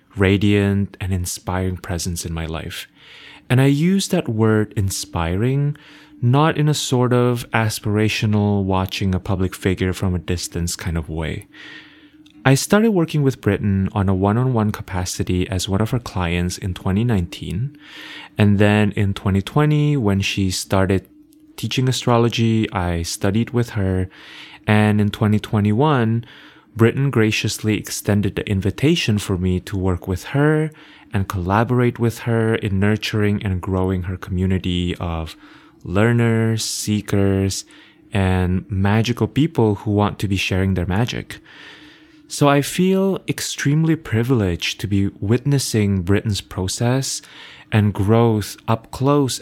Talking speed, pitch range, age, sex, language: 130 wpm, 95-125 Hz, 20-39, male, English